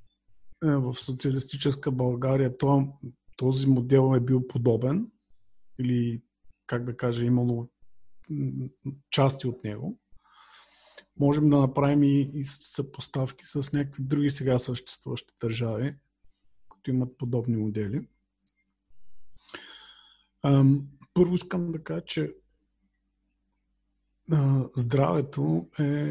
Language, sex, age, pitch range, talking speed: Bulgarian, male, 40-59, 125-145 Hz, 85 wpm